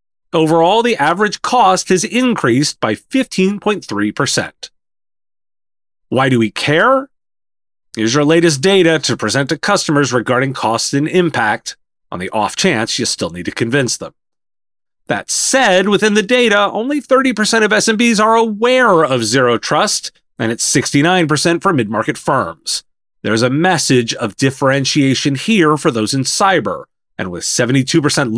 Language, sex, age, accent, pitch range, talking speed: English, male, 30-49, American, 125-200 Hz, 140 wpm